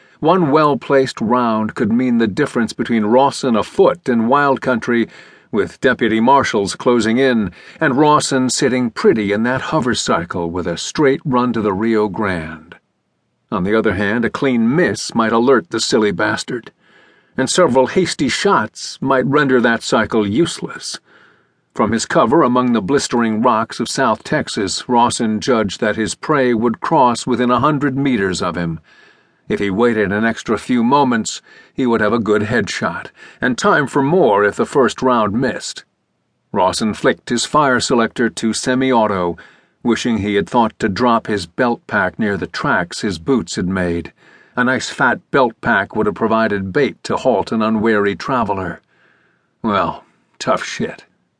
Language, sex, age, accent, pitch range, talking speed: English, male, 50-69, American, 110-130 Hz, 165 wpm